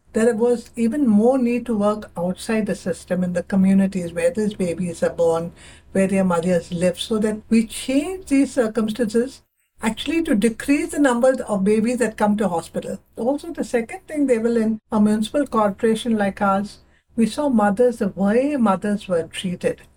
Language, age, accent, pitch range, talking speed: English, 60-79, Indian, 195-245 Hz, 175 wpm